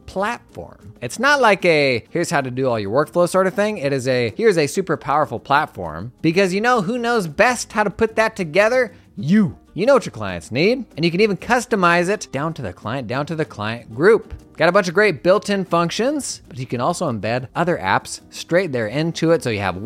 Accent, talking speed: American, 235 wpm